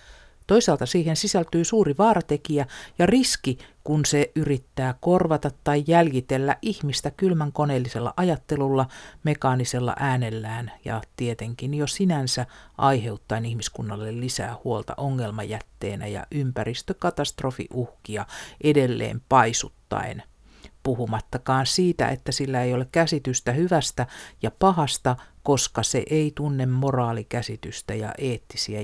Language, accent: Finnish, native